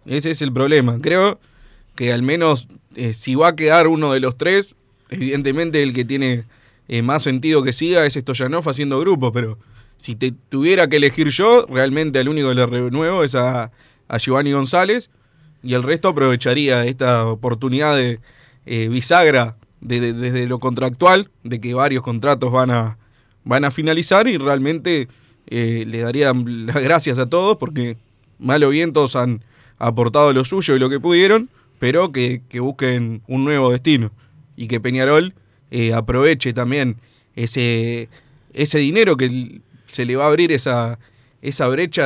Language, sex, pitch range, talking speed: Spanish, male, 125-150 Hz, 165 wpm